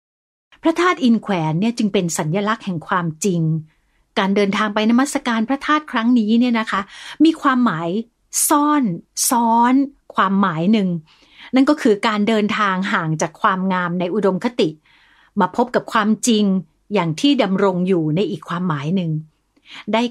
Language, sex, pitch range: Thai, female, 180-245 Hz